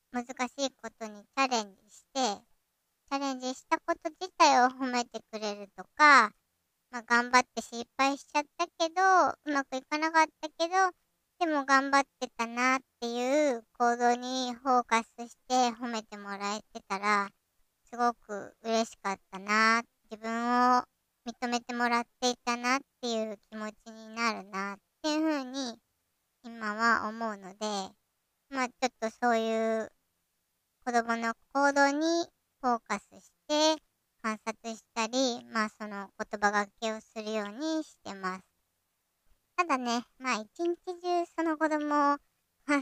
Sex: male